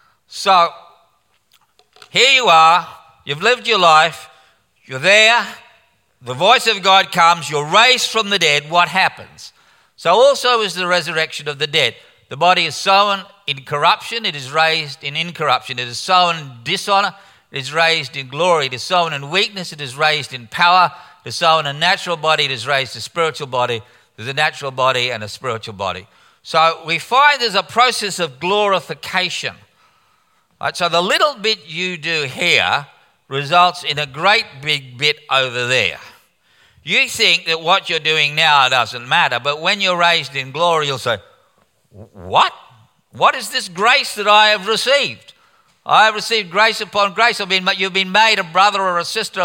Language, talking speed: English, 180 wpm